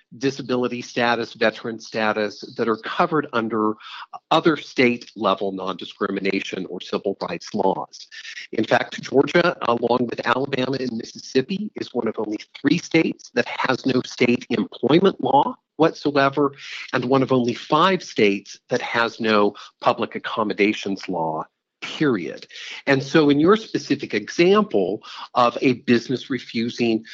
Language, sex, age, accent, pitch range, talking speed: English, male, 50-69, American, 110-140 Hz, 130 wpm